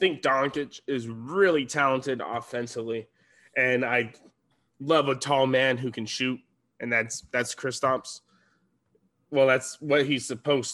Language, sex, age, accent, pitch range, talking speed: English, male, 20-39, American, 130-160 Hz, 140 wpm